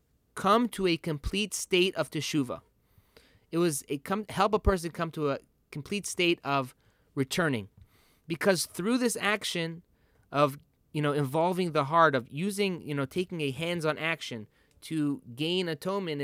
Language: English